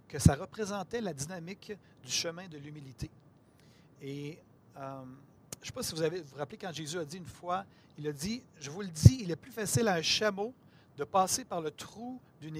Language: French